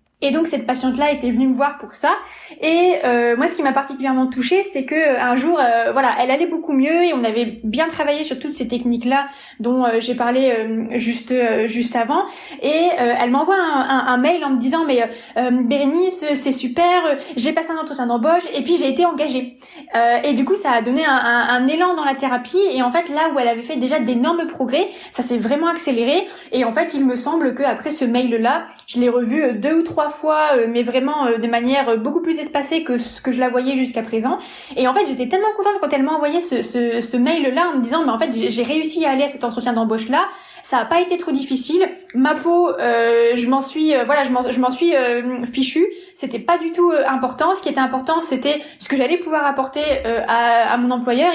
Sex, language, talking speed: female, French, 235 wpm